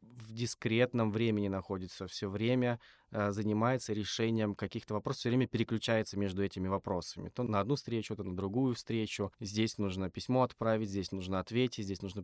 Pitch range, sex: 100-120 Hz, male